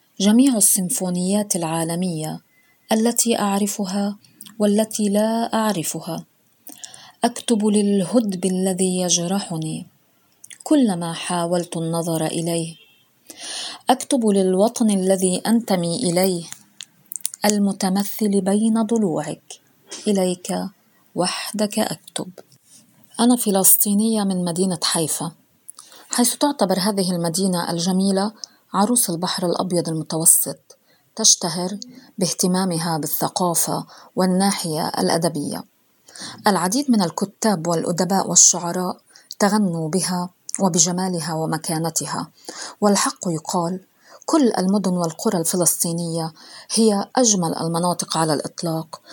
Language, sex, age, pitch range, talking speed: Arabic, female, 30-49, 170-210 Hz, 80 wpm